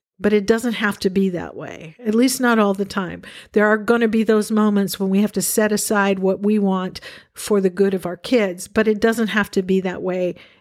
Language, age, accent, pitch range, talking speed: English, 50-69, American, 195-235 Hz, 250 wpm